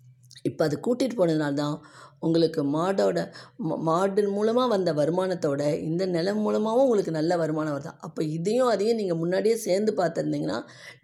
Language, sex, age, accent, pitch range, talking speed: Tamil, female, 20-39, native, 145-195 Hz, 125 wpm